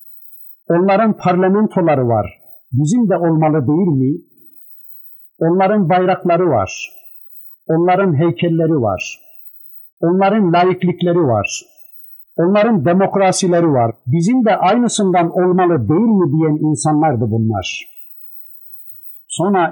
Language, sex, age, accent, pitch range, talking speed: Turkish, male, 50-69, native, 135-180 Hz, 90 wpm